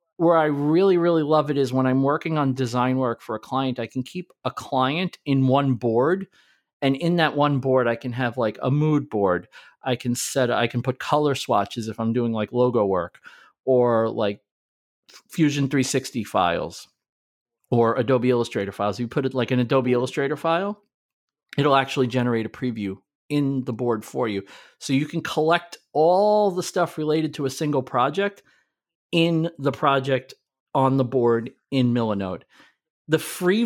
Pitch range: 120-155 Hz